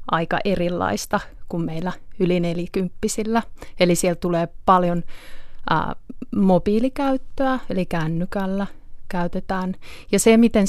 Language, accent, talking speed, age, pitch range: Finnish, native, 95 wpm, 30-49, 170-195 Hz